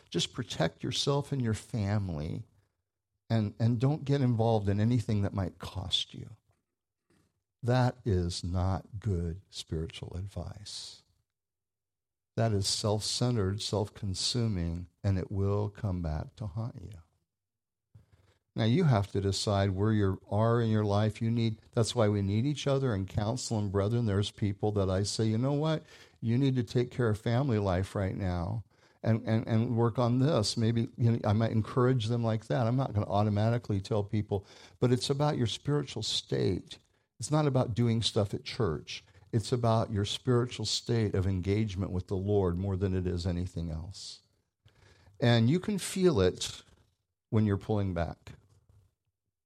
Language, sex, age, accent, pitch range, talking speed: English, male, 60-79, American, 100-120 Hz, 165 wpm